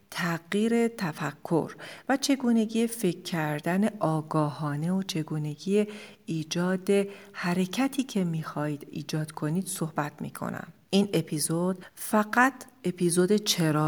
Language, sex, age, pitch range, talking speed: Persian, female, 40-59, 155-210 Hz, 95 wpm